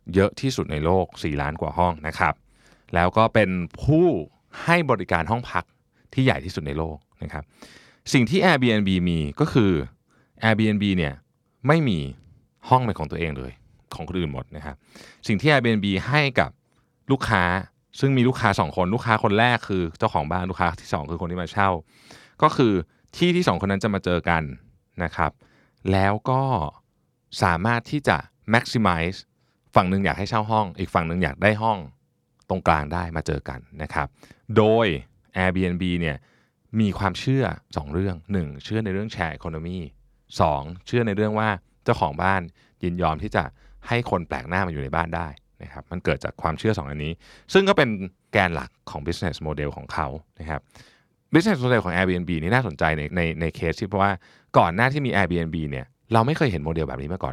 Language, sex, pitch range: Thai, male, 85-115 Hz